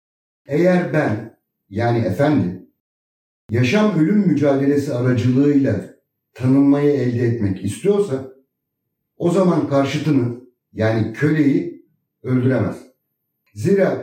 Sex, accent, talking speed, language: male, native, 80 wpm, Turkish